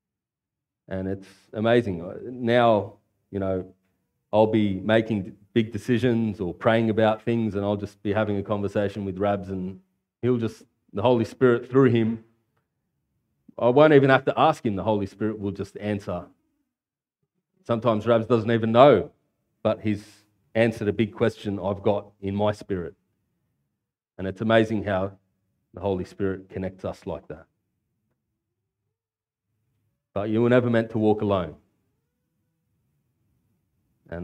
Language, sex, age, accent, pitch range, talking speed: English, male, 30-49, Australian, 100-115 Hz, 140 wpm